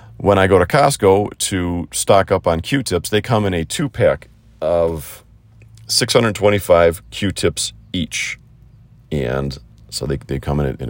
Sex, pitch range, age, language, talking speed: male, 80-115 Hz, 40-59, English, 155 wpm